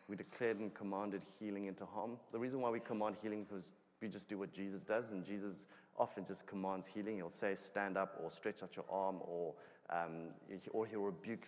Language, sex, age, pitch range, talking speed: English, male, 30-49, 100-115 Hz, 210 wpm